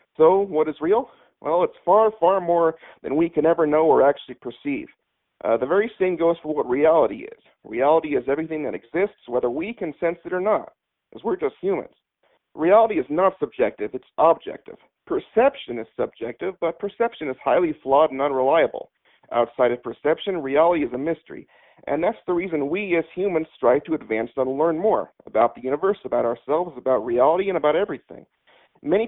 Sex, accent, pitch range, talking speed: male, American, 140-235 Hz, 185 wpm